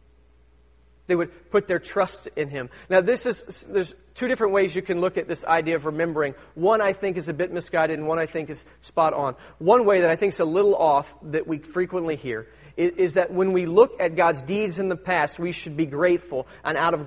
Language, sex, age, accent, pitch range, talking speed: English, male, 40-59, American, 150-195 Hz, 235 wpm